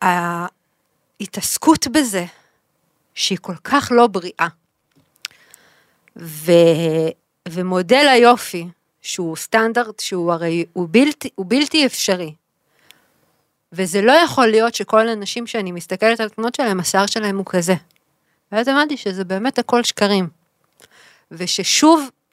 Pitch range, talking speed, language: 175-245 Hz, 110 wpm, Hebrew